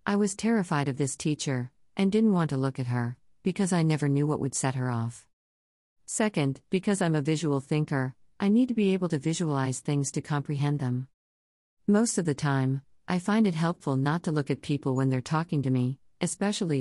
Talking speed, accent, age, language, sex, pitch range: 205 wpm, American, 50-69, English, female, 130-165 Hz